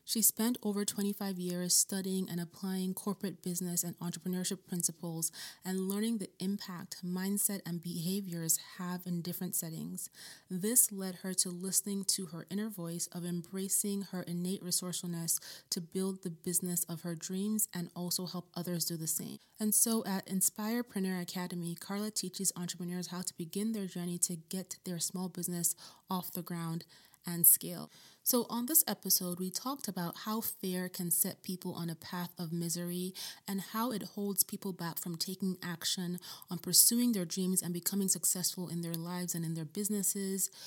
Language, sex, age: English, female, 30-49